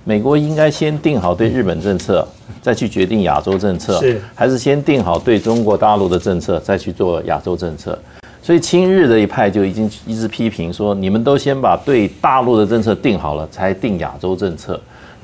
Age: 50-69